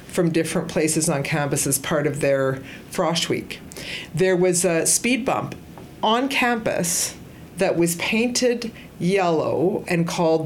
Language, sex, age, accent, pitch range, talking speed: English, female, 50-69, American, 155-190 Hz, 140 wpm